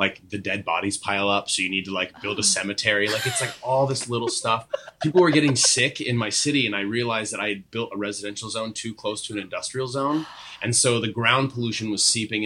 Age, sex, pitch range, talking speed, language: 20-39, male, 105-145 Hz, 245 wpm, English